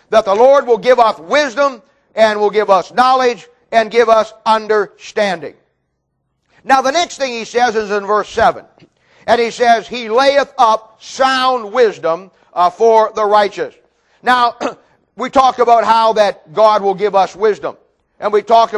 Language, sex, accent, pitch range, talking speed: English, male, American, 210-260 Hz, 165 wpm